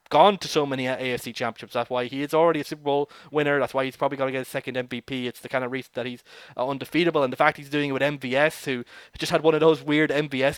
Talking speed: 280 wpm